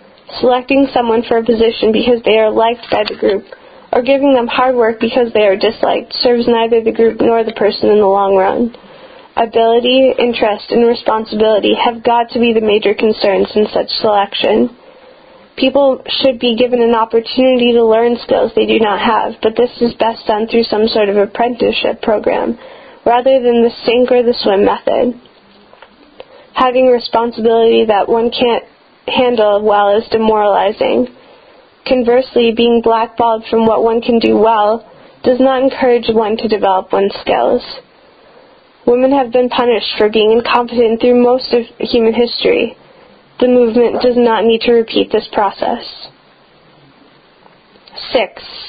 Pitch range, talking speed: 225-250 Hz, 155 wpm